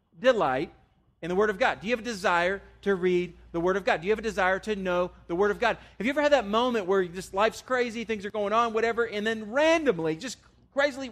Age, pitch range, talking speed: 40-59, 160-225 Hz, 260 wpm